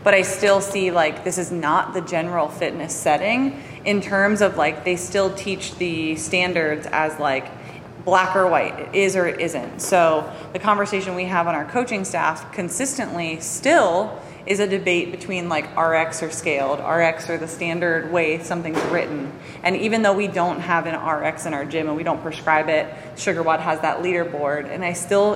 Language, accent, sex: English, American, female